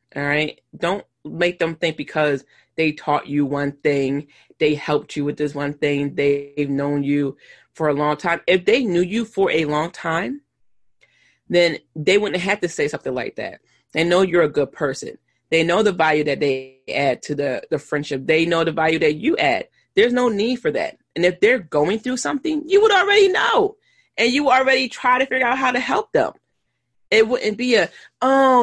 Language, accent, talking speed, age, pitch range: English, American, 205 wpm, 30-49, 150-240 Hz